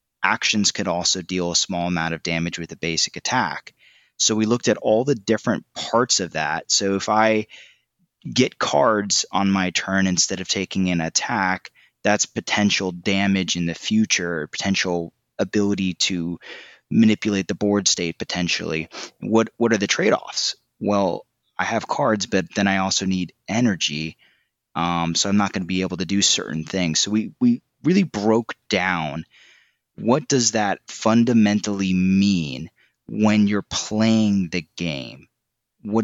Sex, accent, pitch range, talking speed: male, American, 90-105 Hz, 155 wpm